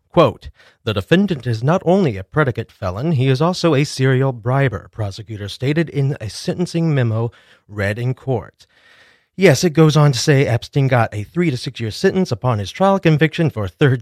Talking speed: 190 wpm